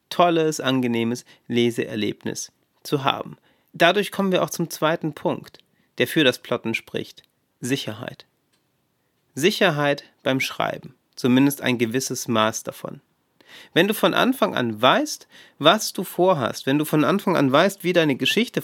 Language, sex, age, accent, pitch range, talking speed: German, male, 30-49, German, 125-170 Hz, 140 wpm